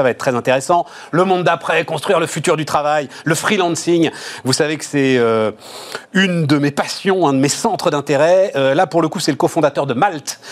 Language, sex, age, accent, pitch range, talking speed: French, male, 40-59, French, 120-155 Hz, 215 wpm